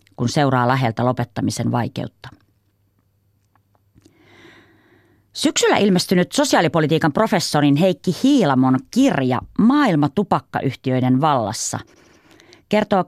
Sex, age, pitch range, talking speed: female, 30-49, 120-180 Hz, 75 wpm